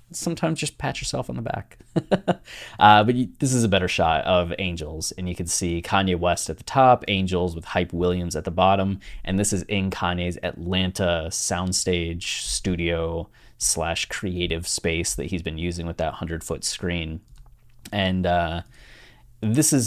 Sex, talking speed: male, 165 wpm